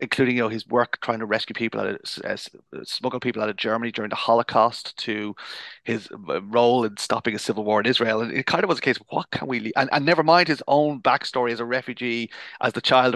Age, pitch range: 30-49, 115-130 Hz